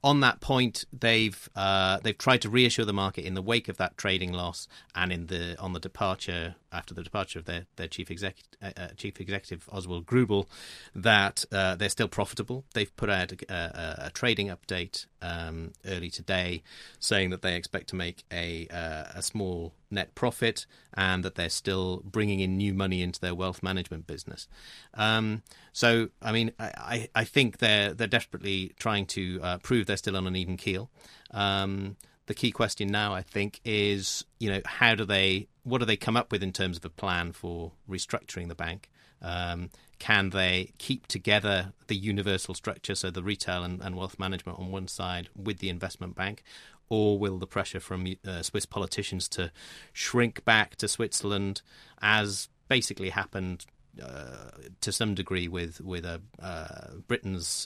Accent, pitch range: British, 90-105 Hz